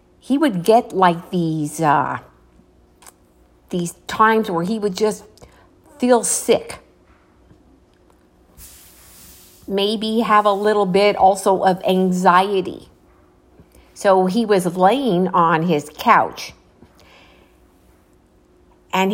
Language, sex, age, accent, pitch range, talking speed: English, female, 50-69, American, 145-205 Hz, 95 wpm